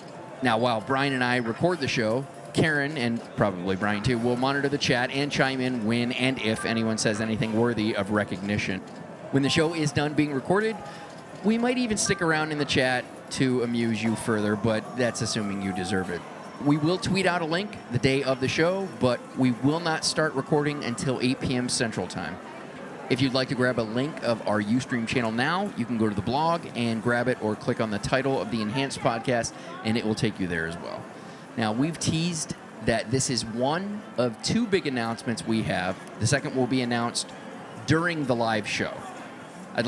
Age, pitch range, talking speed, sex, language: 30-49, 110-145 Hz, 205 wpm, male, English